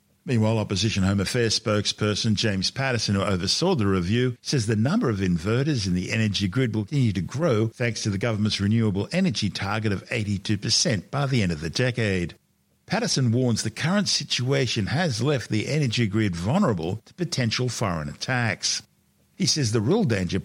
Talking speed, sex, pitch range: 175 wpm, male, 100-130 Hz